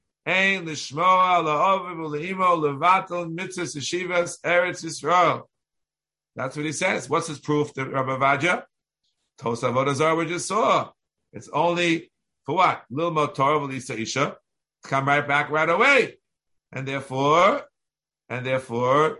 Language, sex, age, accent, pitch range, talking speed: English, male, 50-69, American, 130-175 Hz, 95 wpm